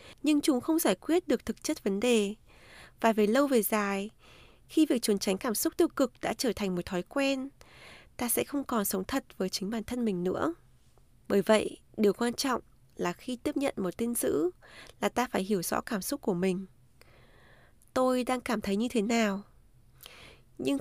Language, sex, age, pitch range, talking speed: Vietnamese, female, 20-39, 205-270 Hz, 200 wpm